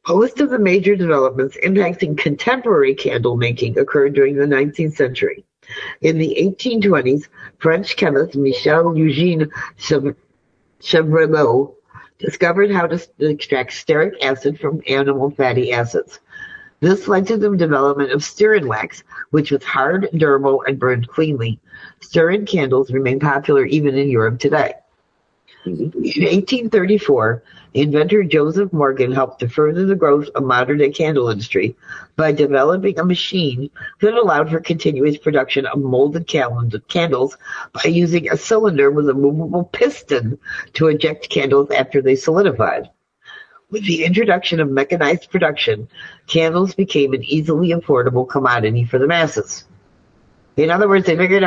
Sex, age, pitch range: female, 50-69, 140-190 Hz